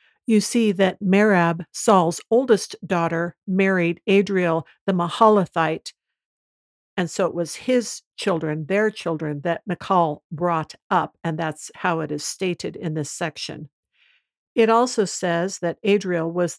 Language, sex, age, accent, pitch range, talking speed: English, female, 60-79, American, 165-205 Hz, 140 wpm